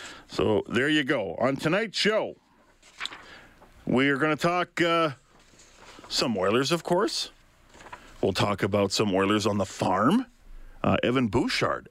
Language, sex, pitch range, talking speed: English, male, 105-140 Hz, 140 wpm